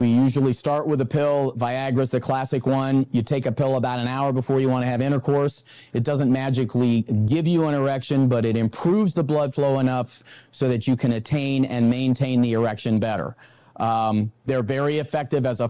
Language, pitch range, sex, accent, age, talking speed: English, 120-140 Hz, male, American, 40-59, 205 wpm